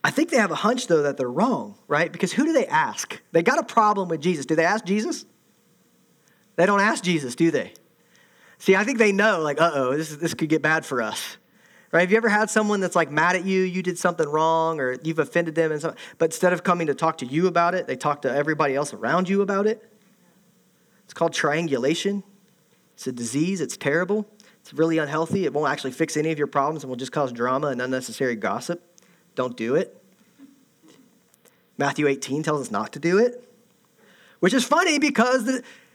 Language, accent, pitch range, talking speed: English, American, 155-220 Hz, 215 wpm